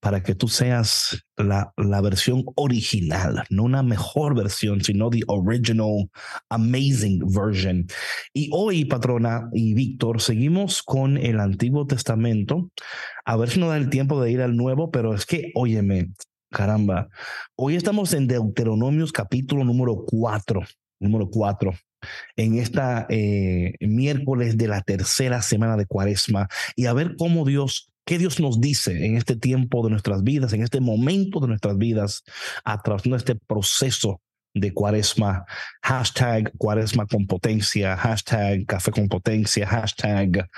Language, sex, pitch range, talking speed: Spanish, male, 105-130 Hz, 145 wpm